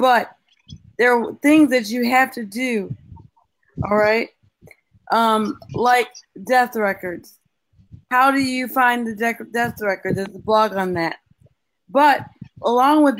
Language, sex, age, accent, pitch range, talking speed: English, female, 40-59, American, 215-275 Hz, 135 wpm